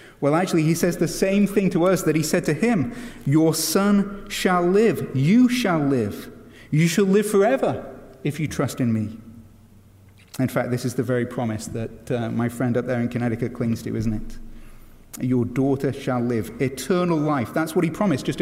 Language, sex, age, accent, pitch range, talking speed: English, male, 30-49, British, 120-180 Hz, 195 wpm